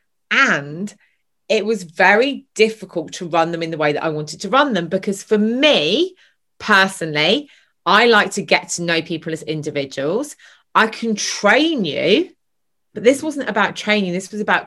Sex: female